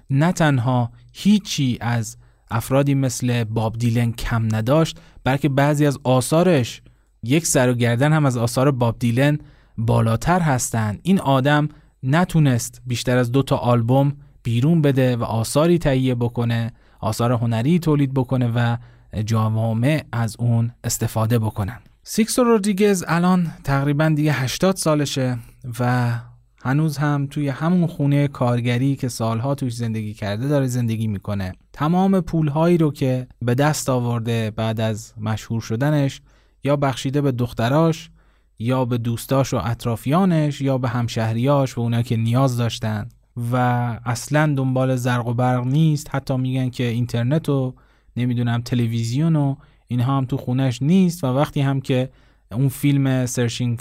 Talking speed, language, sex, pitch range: 140 wpm, Persian, male, 120-145 Hz